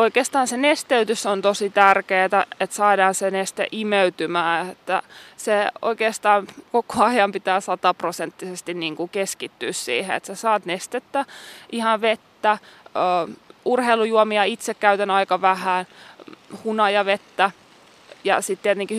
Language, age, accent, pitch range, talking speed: Finnish, 20-39, native, 185-215 Hz, 115 wpm